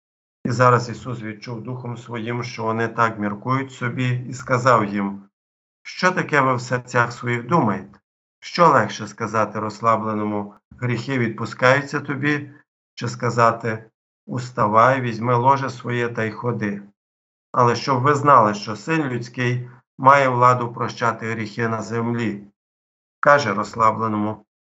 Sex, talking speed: male, 125 wpm